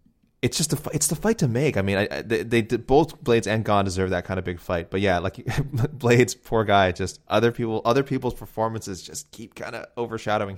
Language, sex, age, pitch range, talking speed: English, male, 20-39, 95-115 Hz, 225 wpm